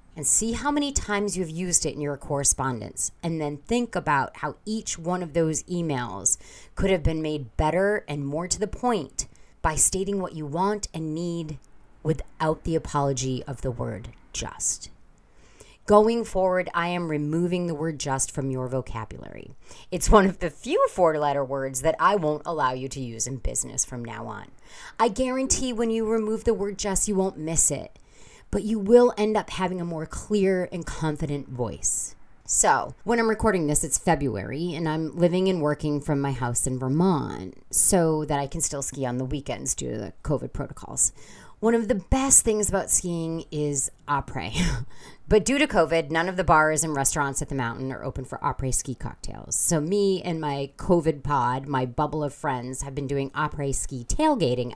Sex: female